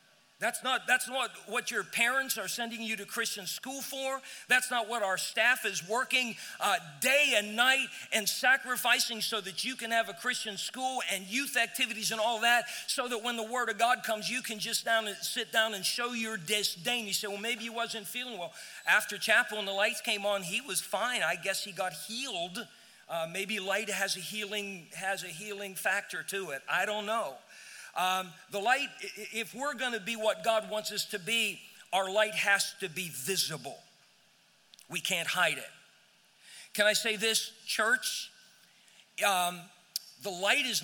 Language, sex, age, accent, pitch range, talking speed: English, male, 40-59, American, 190-235 Hz, 190 wpm